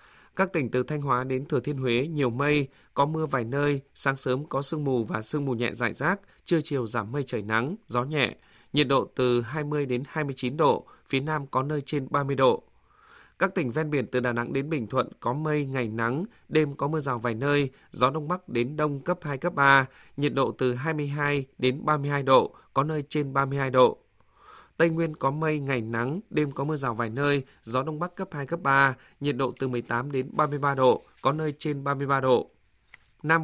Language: Vietnamese